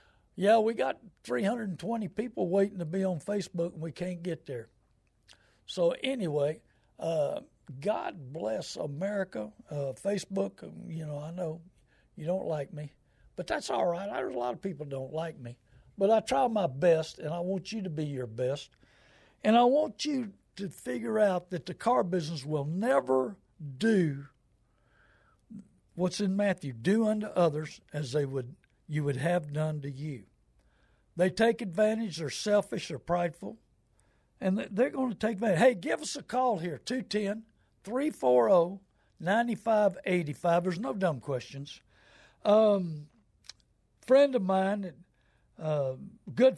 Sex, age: male, 60-79